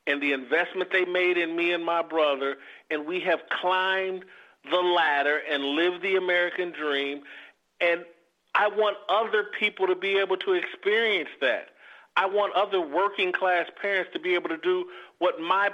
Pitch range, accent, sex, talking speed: 165-210 Hz, American, male, 170 wpm